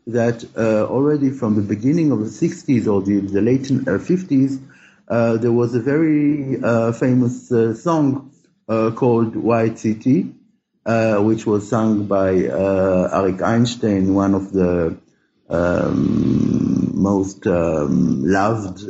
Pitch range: 95-125 Hz